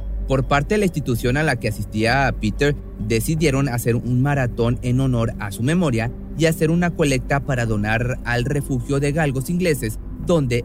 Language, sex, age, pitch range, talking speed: Spanish, male, 30-49, 105-145 Hz, 175 wpm